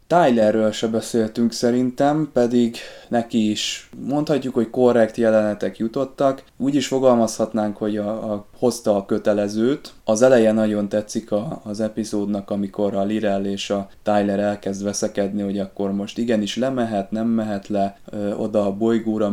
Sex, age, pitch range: male, 20-39, 100-110 Hz